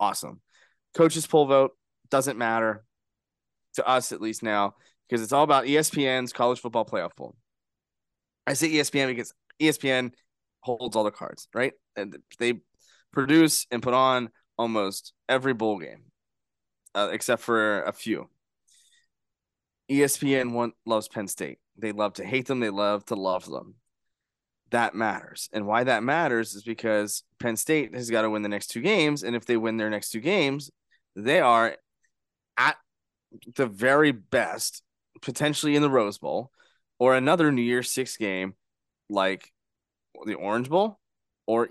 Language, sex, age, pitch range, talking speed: English, male, 20-39, 110-135 Hz, 155 wpm